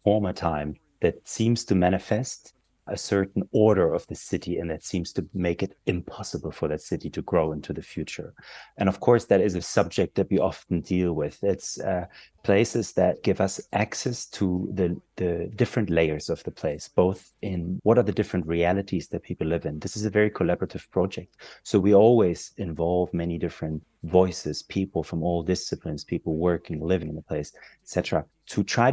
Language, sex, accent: English, male, German